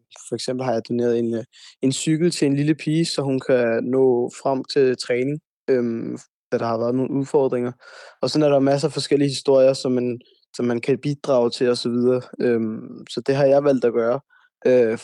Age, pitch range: 20-39, 120-140 Hz